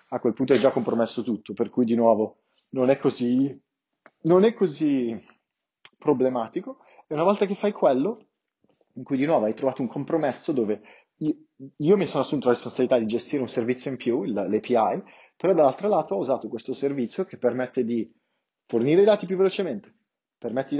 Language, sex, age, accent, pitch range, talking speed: Italian, male, 30-49, native, 120-150 Hz, 190 wpm